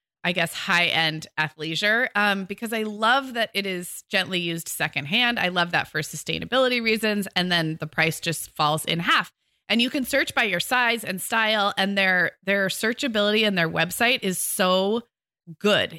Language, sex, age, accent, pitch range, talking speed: English, female, 20-39, American, 180-235 Hz, 175 wpm